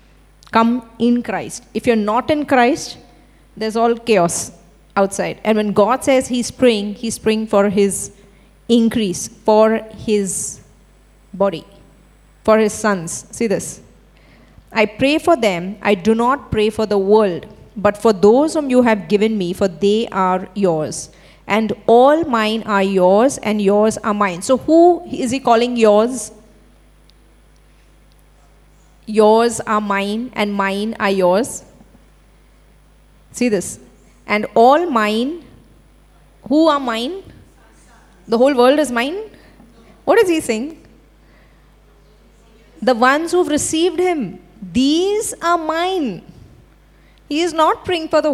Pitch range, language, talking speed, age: 205-265 Hz, English, 135 wpm, 30-49